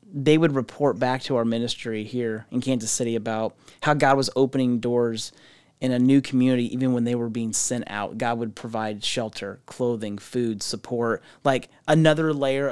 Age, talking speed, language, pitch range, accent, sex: 30-49, 180 wpm, English, 115-145 Hz, American, male